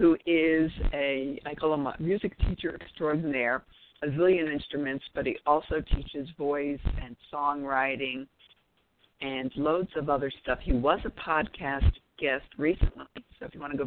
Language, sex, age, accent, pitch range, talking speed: English, female, 60-79, American, 135-165 Hz, 160 wpm